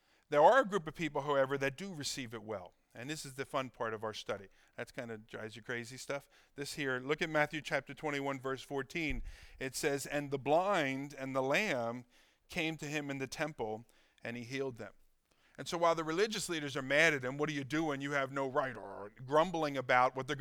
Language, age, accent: English, 50-69, American